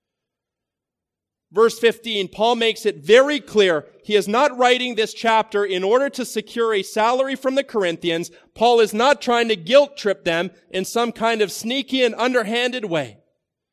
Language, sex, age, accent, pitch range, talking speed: English, male, 40-59, American, 195-240 Hz, 165 wpm